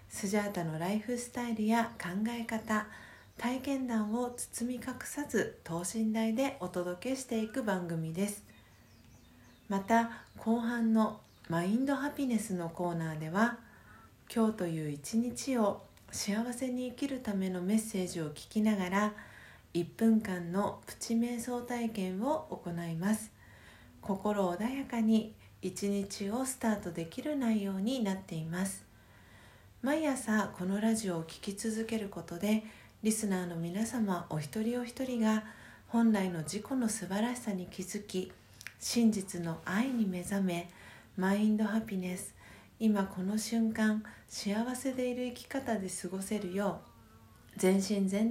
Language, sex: Japanese, female